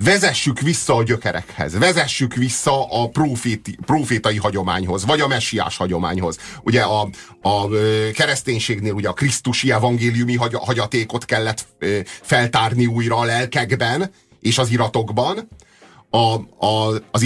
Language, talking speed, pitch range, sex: Hungarian, 105 wpm, 105-135 Hz, male